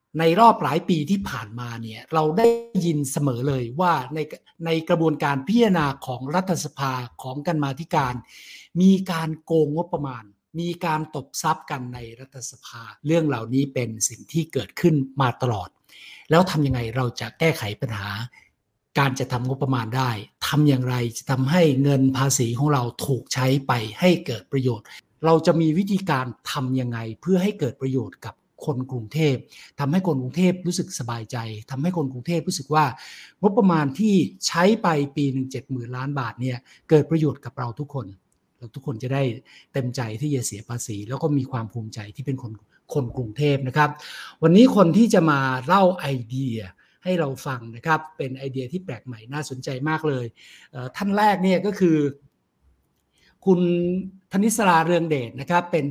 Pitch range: 125-165 Hz